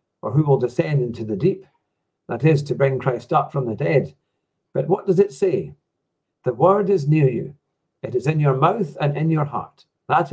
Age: 50-69